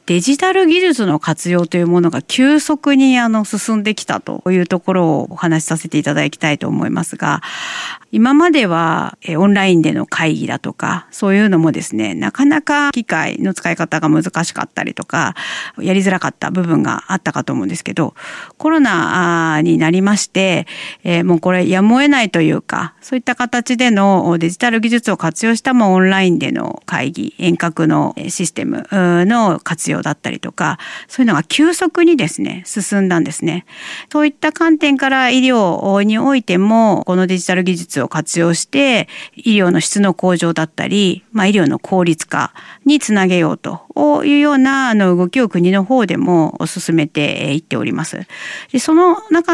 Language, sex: Japanese, female